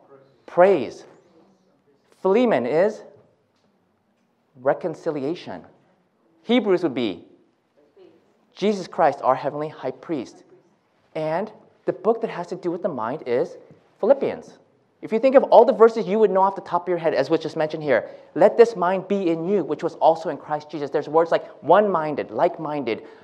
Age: 30-49